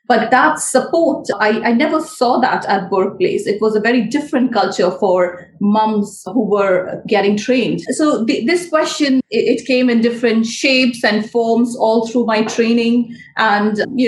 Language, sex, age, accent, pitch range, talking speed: English, female, 30-49, Indian, 210-255 Hz, 160 wpm